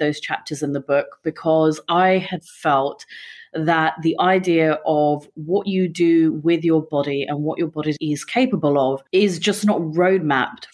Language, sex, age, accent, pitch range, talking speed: English, female, 30-49, British, 155-185 Hz, 170 wpm